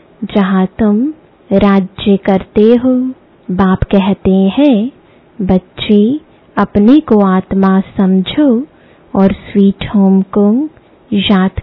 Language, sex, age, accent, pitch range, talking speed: English, female, 20-39, Indian, 195-245 Hz, 95 wpm